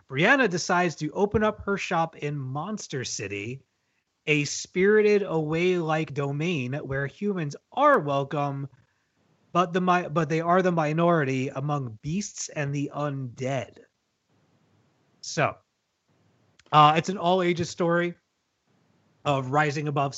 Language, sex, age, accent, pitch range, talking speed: English, male, 30-49, American, 135-185 Hz, 120 wpm